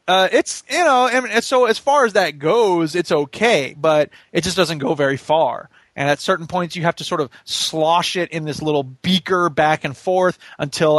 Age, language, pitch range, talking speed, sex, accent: 20-39, English, 140-180 Hz, 230 wpm, male, American